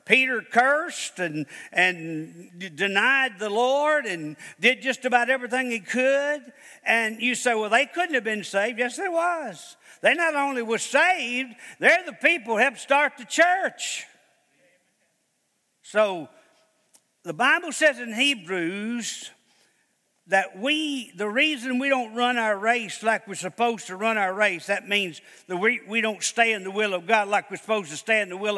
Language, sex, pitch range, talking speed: English, male, 205-275 Hz, 170 wpm